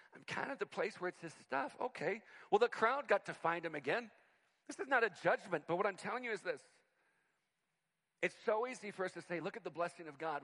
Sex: male